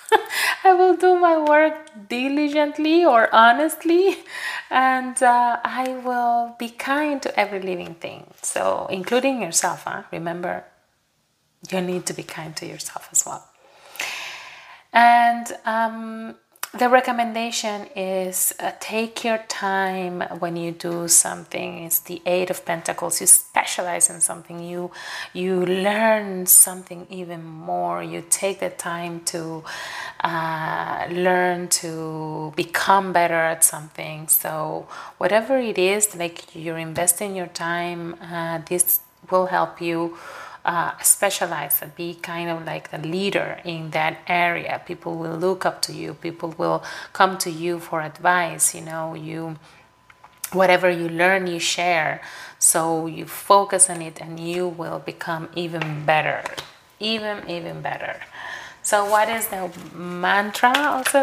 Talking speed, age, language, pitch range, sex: 135 wpm, 30-49, English, 170-215 Hz, female